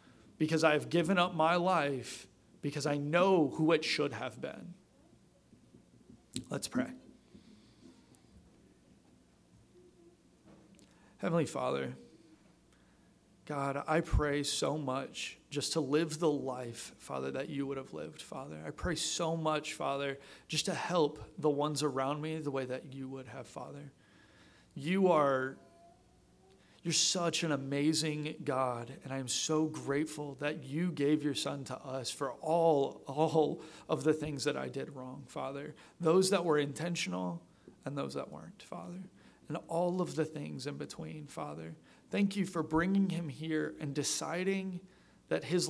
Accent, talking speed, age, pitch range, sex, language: American, 145 wpm, 40-59, 130-160 Hz, male, English